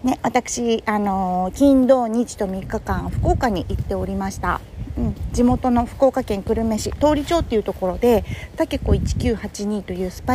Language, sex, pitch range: Japanese, female, 200-255 Hz